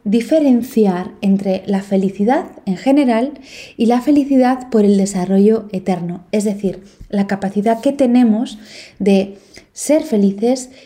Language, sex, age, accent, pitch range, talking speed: Spanish, female, 20-39, Spanish, 195-250 Hz, 120 wpm